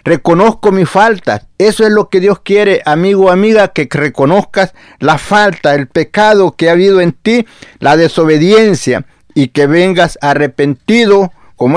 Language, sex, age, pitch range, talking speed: Spanish, male, 50-69, 155-200 Hz, 155 wpm